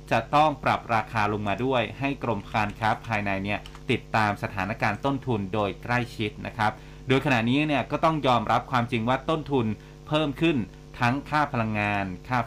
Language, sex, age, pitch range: Thai, male, 30-49, 110-140 Hz